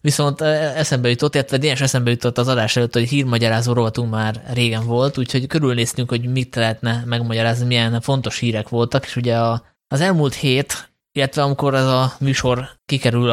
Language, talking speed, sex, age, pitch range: Hungarian, 165 wpm, male, 20-39, 120-135 Hz